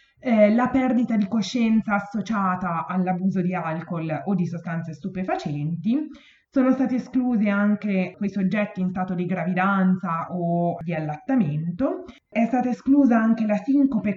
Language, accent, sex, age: Italian, native, female, 20-39